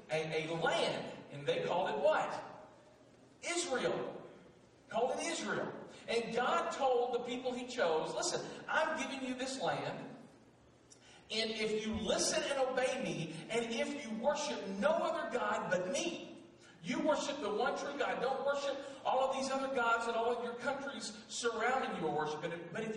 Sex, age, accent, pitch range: male, 40-59, American, 205-275 Hz